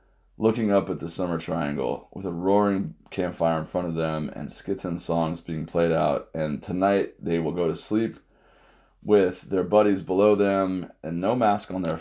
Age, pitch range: 30-49, 85-100 Hz